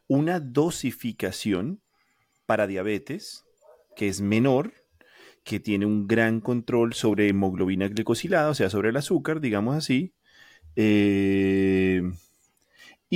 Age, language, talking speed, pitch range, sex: 30-49, Spanish, 105 wpm, 100-135 Hz, male